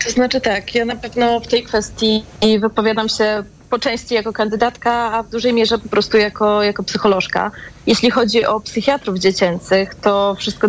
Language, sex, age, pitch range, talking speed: Polish, female, 30-49, 205-235 Hz, 175 wpm